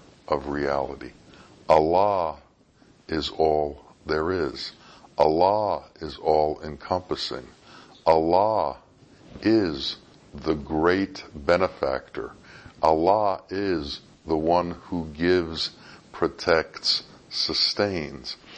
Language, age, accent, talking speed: English, 60-79, American, 75 wpm